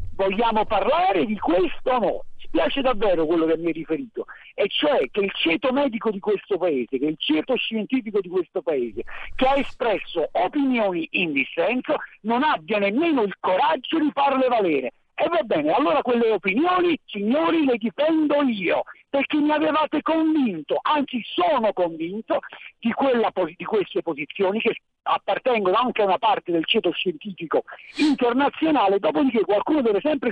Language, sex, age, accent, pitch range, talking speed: Italian, male, 50-69, native, 200-295 Hz, 160 wpm